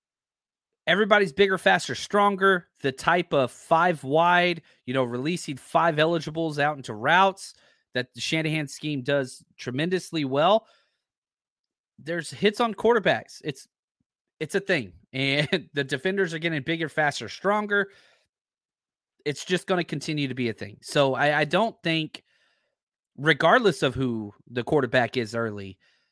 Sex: male